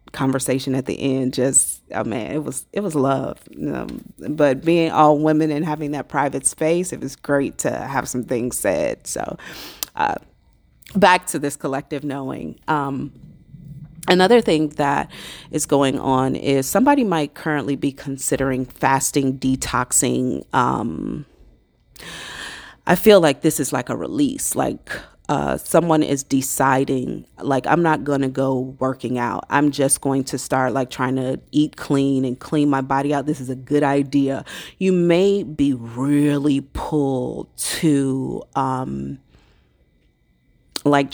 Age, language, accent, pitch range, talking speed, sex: 30-49, English, American, 135-155 Hz, 150 wpm, female